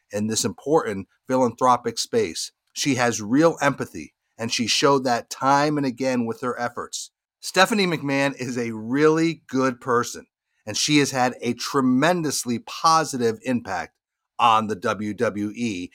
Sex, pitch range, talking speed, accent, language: male, 125-160 Hz, 140 wpm, American, English